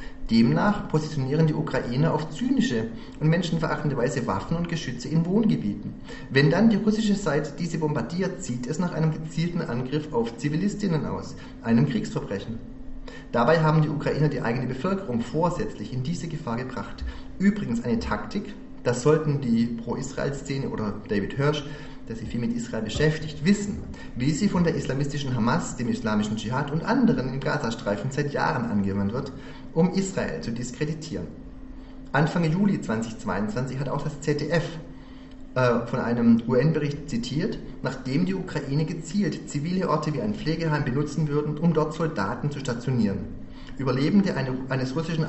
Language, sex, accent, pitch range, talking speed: German, male, German, 125-160 Hz, 150 wpm